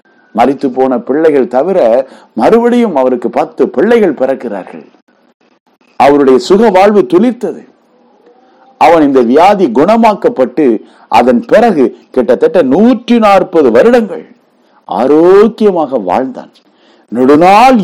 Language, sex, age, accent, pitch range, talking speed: Tamil, male, 50-69, native, 125-195 Hz, 85 wpm